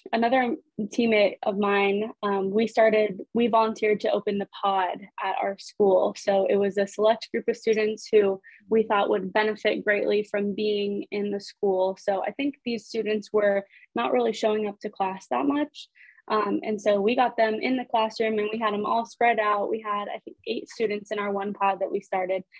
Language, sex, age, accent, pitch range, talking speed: English, female, 20-39, American, 200-220 Hz, 205 wpm